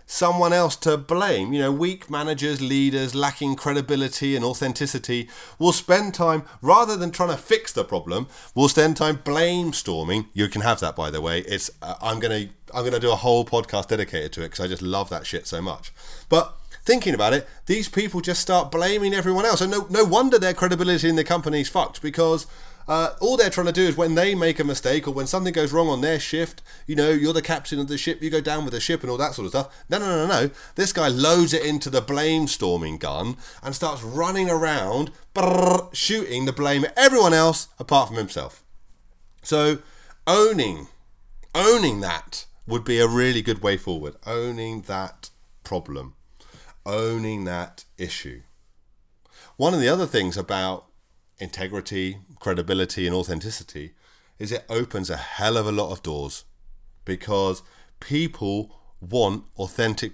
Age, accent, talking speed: 30-49, British, 185 wpm